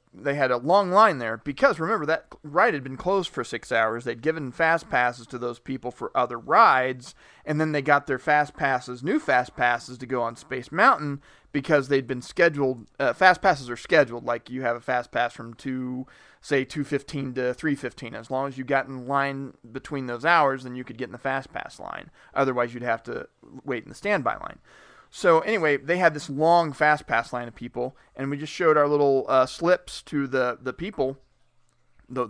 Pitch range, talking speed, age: 125-150 Hz, 210 wpm, 30-49